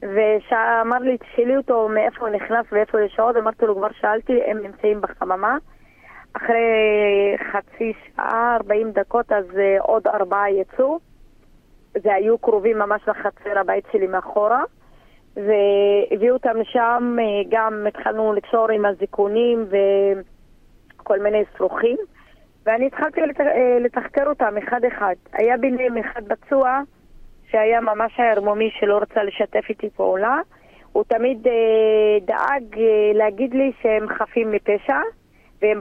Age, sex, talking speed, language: 20-39, female, 120 wpm, Hebrew